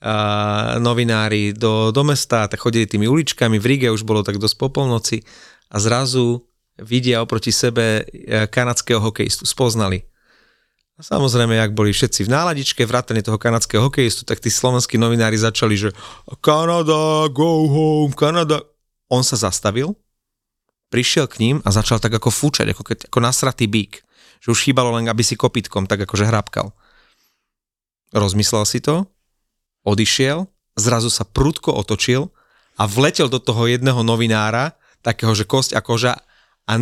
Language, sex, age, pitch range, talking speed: Slovak, male, 30-49, 110-135 Hz, 150 wpm